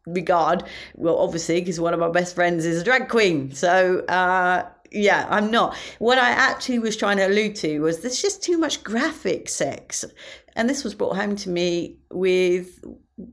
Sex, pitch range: female, 170-275 Hz